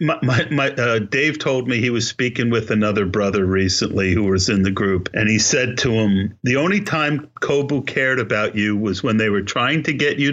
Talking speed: 220 wpm